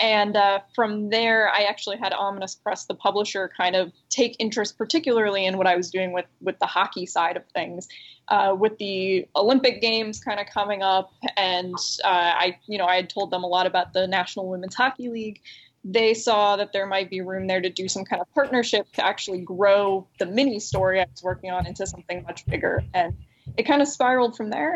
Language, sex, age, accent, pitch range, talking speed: English, female, 20-39, American, 185-215 Hz, 215 wpm